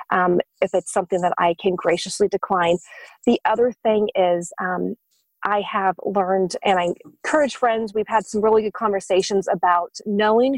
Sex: female